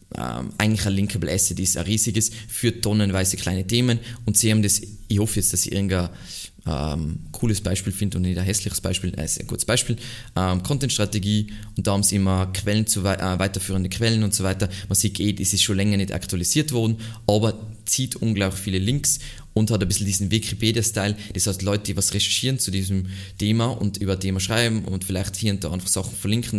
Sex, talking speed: male, 210 wpm